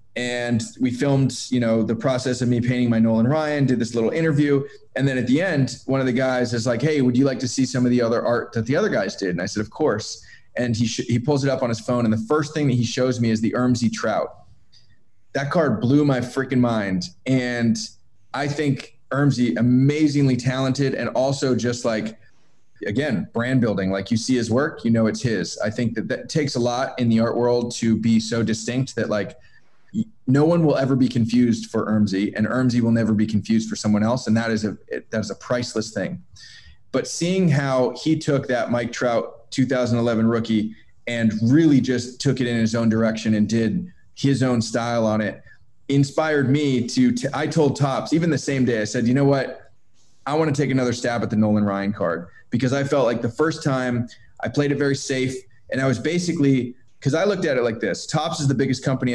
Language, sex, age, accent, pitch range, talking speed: English, male, 20-39, American, 115-135 Hz, 225 wpm